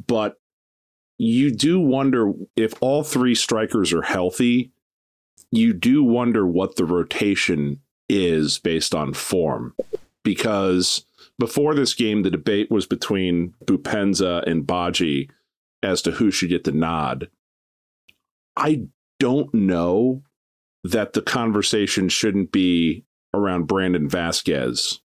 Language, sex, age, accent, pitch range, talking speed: English, male, 40-59, American, 85-110 Hz, 115 wpm